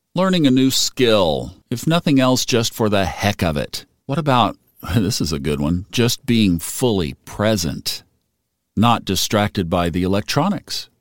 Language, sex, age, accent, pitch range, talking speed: English, male, 50-69, American, 95-125 Hz, 160 wpm